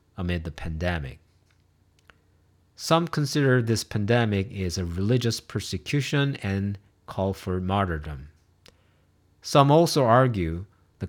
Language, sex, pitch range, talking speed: English, male, 85-110 Hz, 105 wpm